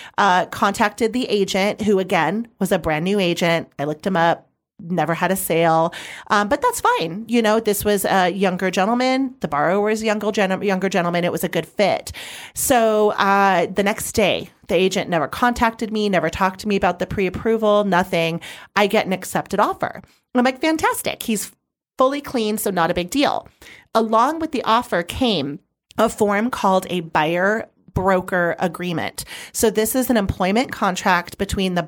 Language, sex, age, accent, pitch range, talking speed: English, female, 40-59, American, 185-225 Hz, 185 wpm